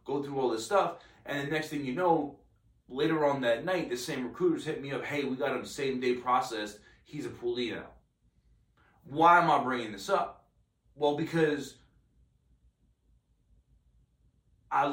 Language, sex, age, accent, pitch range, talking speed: English, male, 30-49, American, 125-160 Hz, 160 wpm